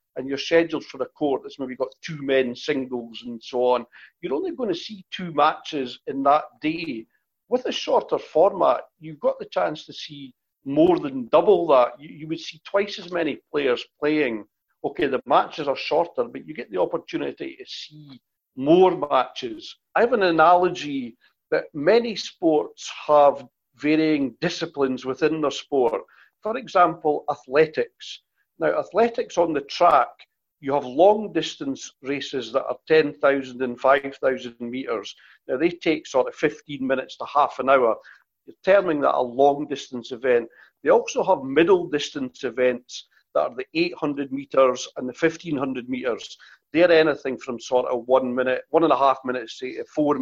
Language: English